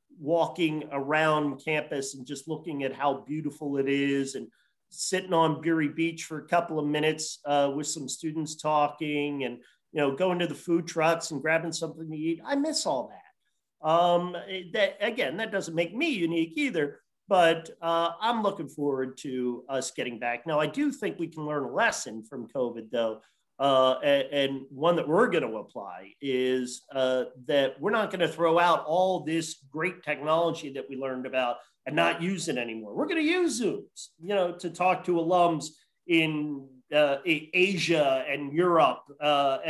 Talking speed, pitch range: 185 wpm, 145-185 Hz